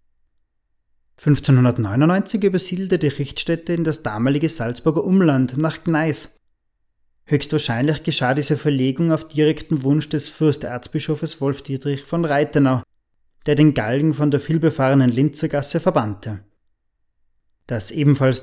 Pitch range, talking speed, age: 125-155 Hz, 105 wpm, 20-39